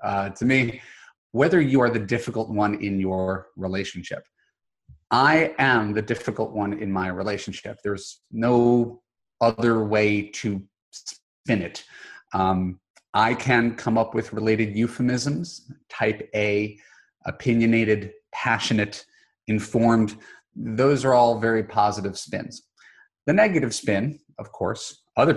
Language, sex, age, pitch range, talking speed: English, male, 30-49, 105-125 Hz, 125 wpm